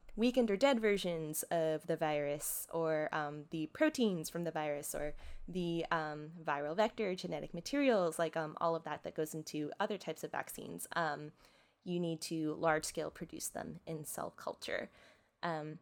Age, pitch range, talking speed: 20-39, 155-220 Hz, 170 wpm